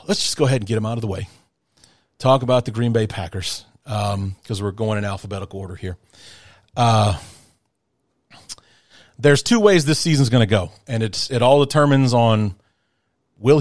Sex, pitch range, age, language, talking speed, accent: male, 105-140 Hz, 30-49, English, 180 wpm, American